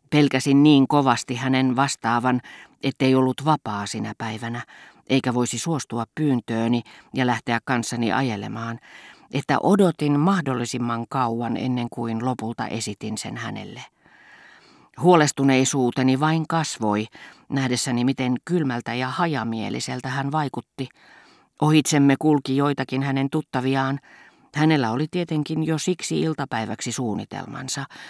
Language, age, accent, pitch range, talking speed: Finnish, 40-59, native, 115-140 Hz, 105 wpm